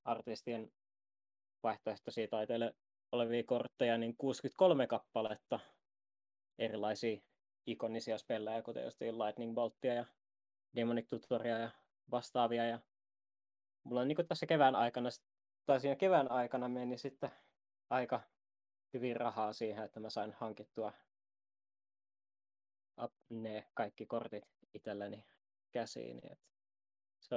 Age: 20-39